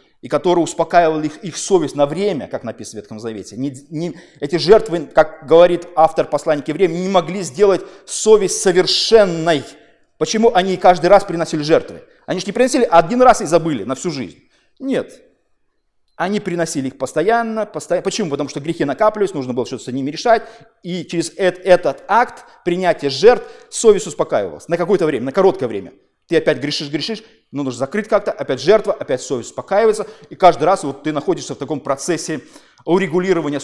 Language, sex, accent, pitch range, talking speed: Russian, male, native, 155-210 Hz, 180 wpm